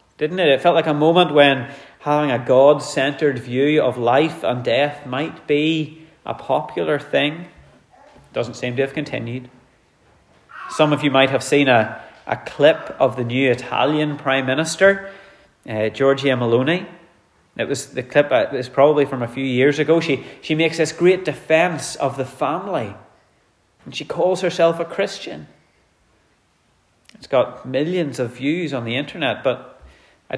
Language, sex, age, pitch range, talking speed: English, male, 30-49, 125-155 Hz, 160 wpm